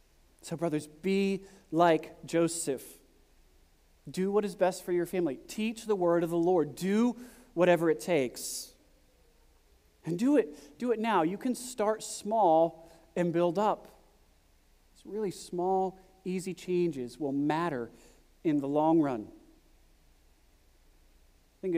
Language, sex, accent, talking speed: English, male, American, 125 wpm